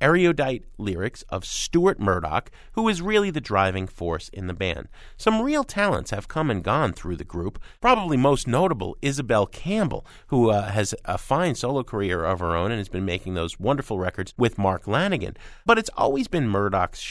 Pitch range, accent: 95-155 Hz, American